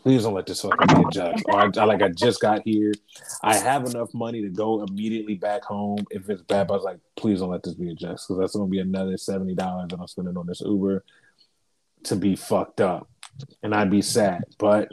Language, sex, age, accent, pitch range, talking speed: English, male, 20-39, American, 95-110 Hz, 235 wpm